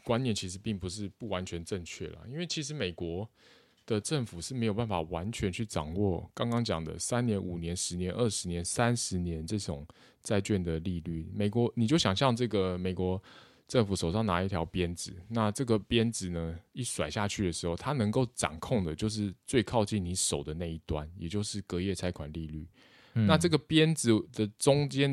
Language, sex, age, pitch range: Chinese, male, 20-39, 85-115 Hz